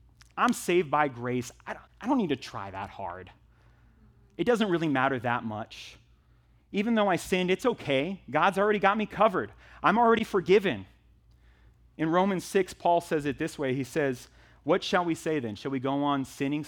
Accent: American